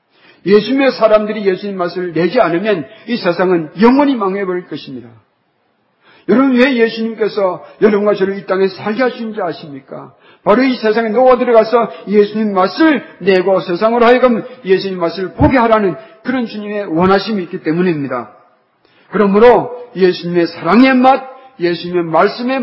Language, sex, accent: Korean, male, native